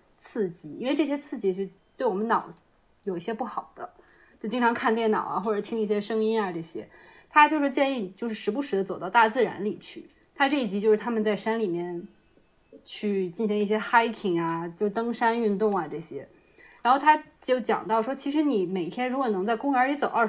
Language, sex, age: Chinese, female, 20-39